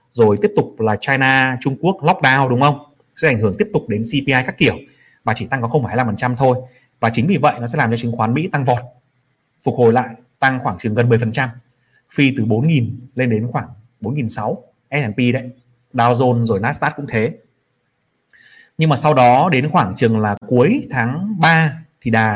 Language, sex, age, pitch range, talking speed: Vietnamese, male, 30-49, 115-145 Hz, 200 wpm